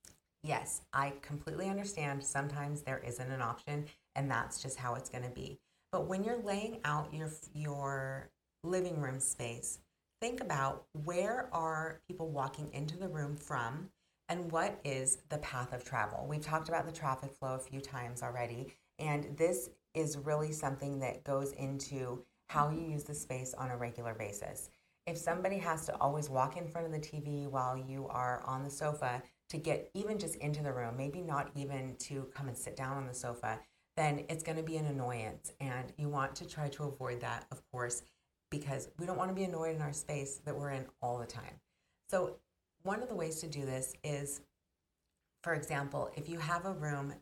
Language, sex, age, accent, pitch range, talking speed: English, female, 30-49, American, 130-160 Hz, 195 wpm